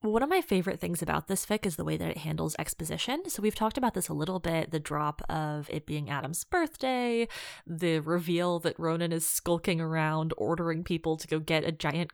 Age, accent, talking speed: 20-39, American, 220 wpm